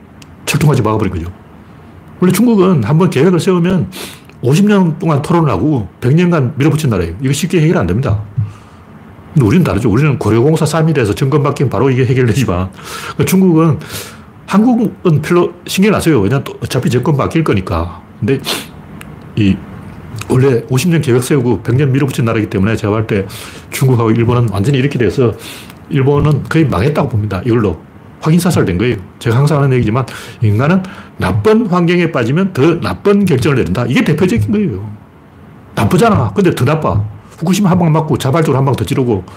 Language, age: Korean, 40-59